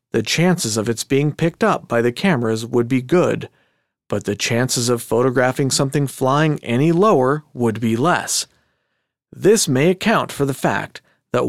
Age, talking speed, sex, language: 40-59, 165 wpm, male, English